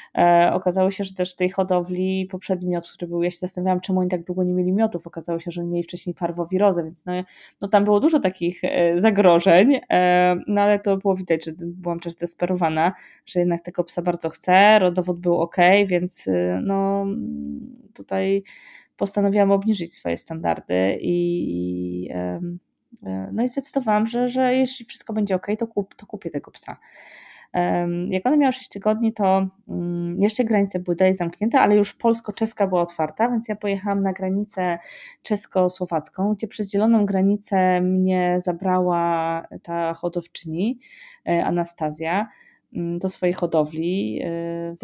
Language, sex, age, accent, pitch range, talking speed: Polish, female, 20-39, native, 170-205 Hz, 150 wpm